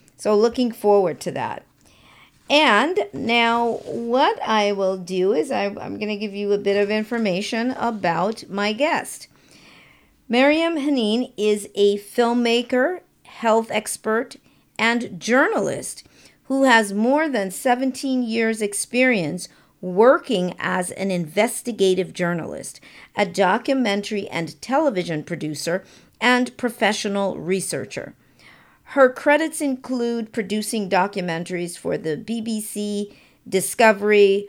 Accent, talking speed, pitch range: American, 110 wpm, 190-240 Hz